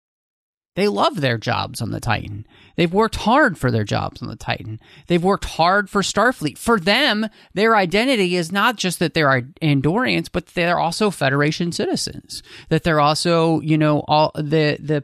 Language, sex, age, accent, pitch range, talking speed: English, male, 30-49, American, 130-170 Hz, 175 wpm